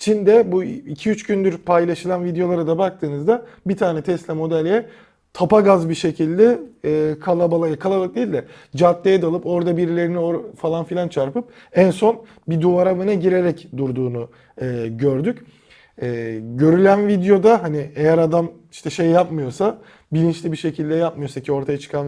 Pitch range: 155-195 Hz